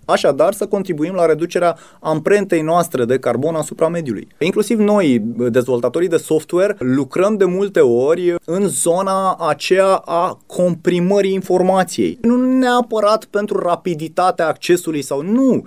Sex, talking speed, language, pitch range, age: male, 125 wpm, Romanian, 135-205 Hz, 30-49